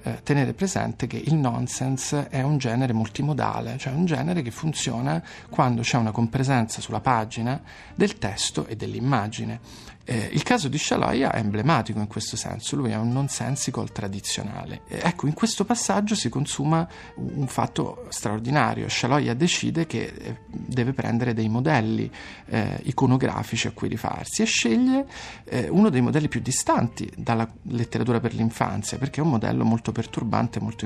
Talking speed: 165 wpm